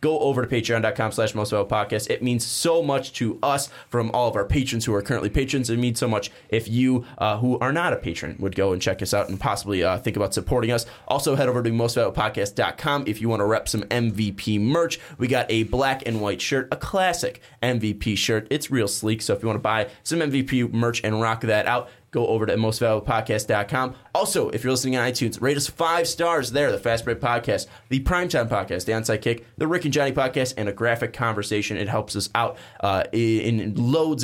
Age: 20-39